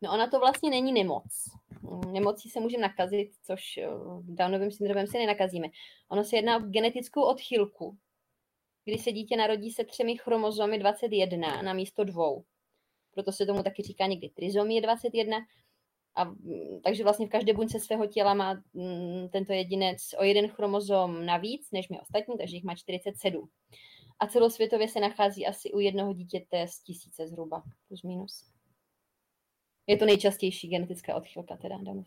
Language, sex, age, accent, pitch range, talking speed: Czech, female, 20-39, native, 185-215 Hz, 155 wpm